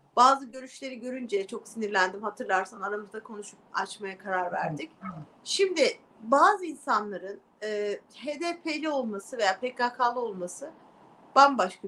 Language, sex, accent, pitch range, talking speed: Turkish, female, native, 200-275 Hz, 105 wpm